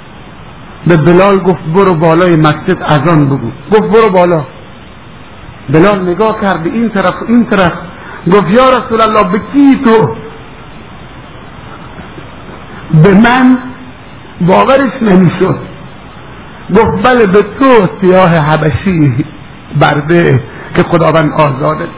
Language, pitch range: Persian, 175-265 Hz